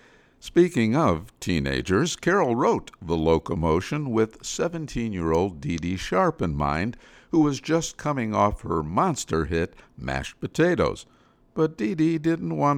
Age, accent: 60-79, American